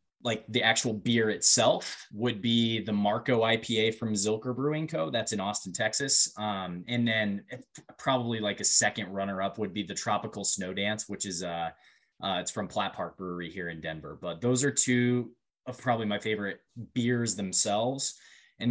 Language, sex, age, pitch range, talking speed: English, male, 20-39, 100-125 Hz, 180 wpm